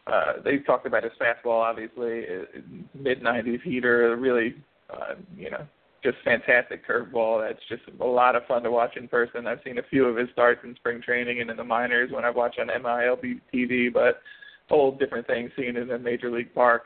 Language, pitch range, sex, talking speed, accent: English, 120-125 Hz, male, 205 wpm, American